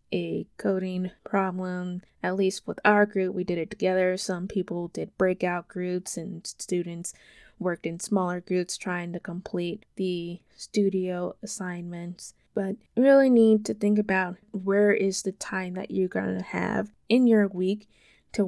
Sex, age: female, 20-39